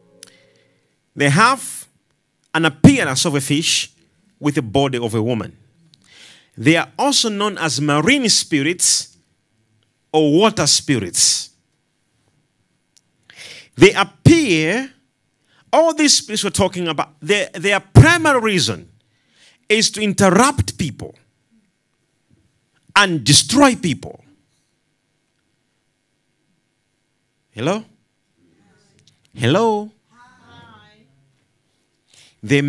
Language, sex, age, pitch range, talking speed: English, male, 40-59, 140-195 Hz, 85 wpm